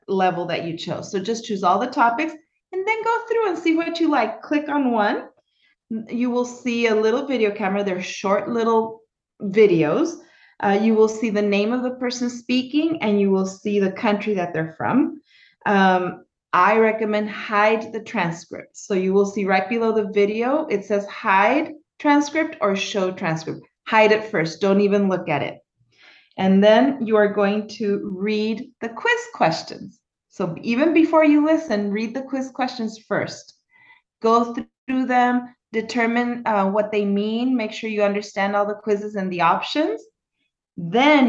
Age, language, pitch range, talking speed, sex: 30-49, English, 200-260 Hz, 175 wpm, female